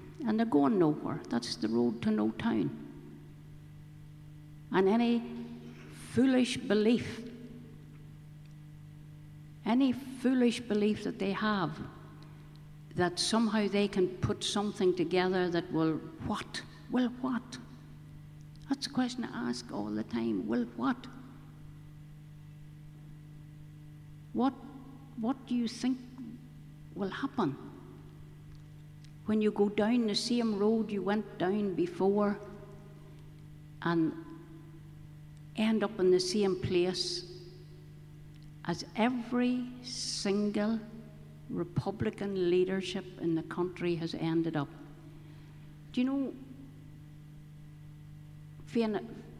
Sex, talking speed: female, 100 wpm